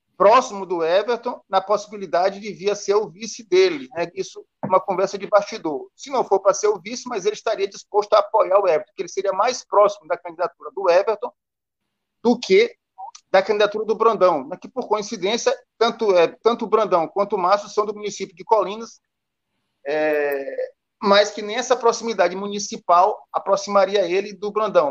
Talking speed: 180 wpm